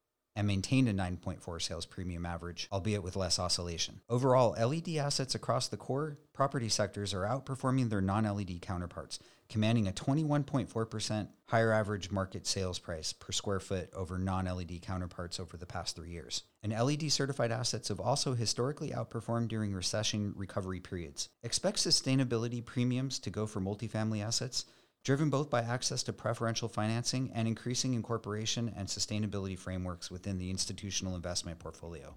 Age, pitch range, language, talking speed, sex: 40-59, 90-130 Hz, English, 150 wpm, male